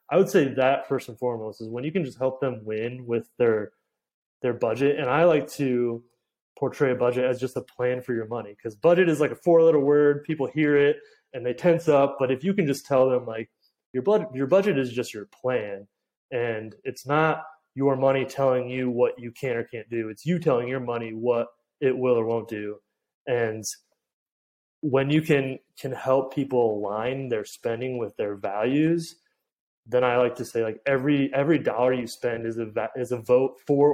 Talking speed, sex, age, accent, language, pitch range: 210 wpm, male, 20-39, American, English, 115-145 Hz